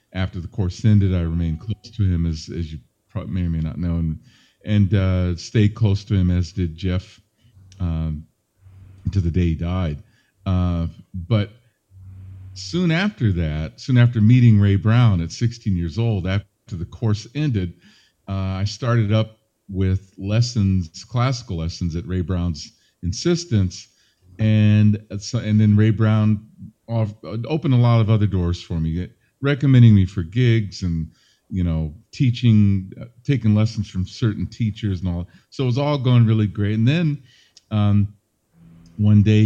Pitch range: 90-110 Hz